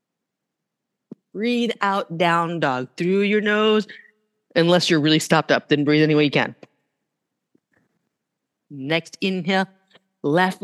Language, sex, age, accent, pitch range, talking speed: English, female, 40-59, American, 165-230 Hz, 120 wpm